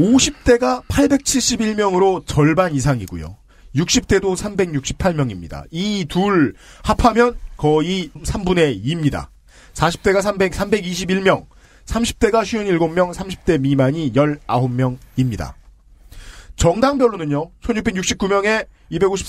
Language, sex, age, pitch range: Korean, male, 40-59, 135-200 Hz